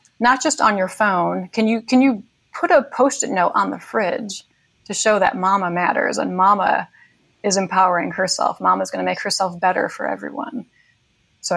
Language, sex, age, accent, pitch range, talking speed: English, female, 30-49, American, 185-235 Hz, 180 wpm